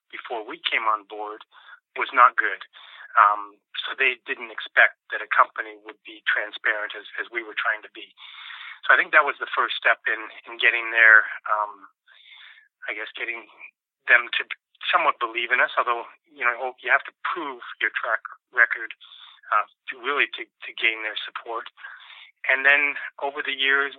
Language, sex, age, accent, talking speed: English, male, 30-49, American, 180 wpm